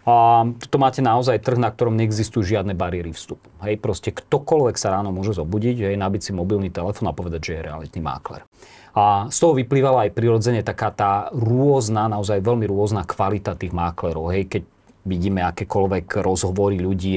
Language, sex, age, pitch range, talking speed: Slovak, male, 40-59, 95-125 Hz, 170 wpm